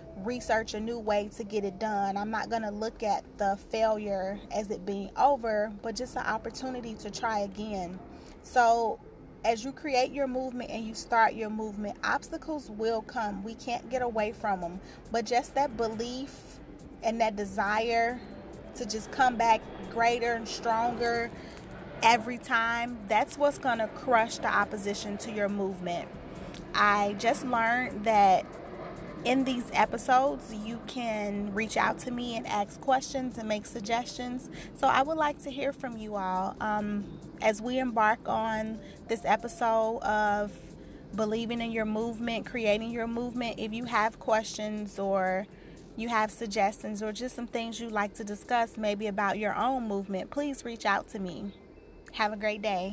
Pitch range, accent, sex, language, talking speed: 210-240 Hz, American, female, English, 165 wpm